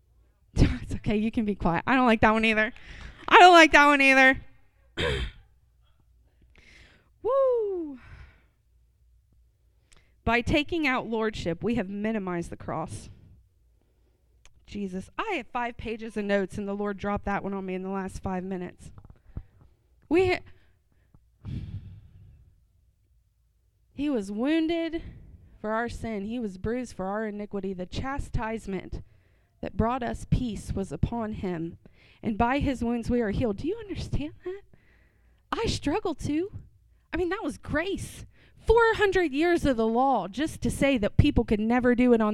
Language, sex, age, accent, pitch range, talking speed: English, female, 20-39, American, 200-285 Hz, 150 wpm